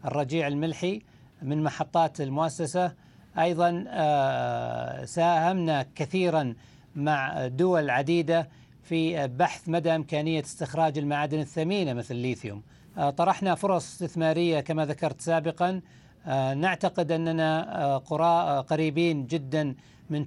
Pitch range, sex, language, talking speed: 140-165 Hz, male, Arabic, 90 wpm